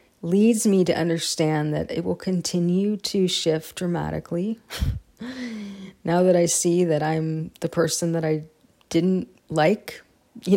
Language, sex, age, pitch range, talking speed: English, female, 30-49, 160-210 Hz, 135 wpm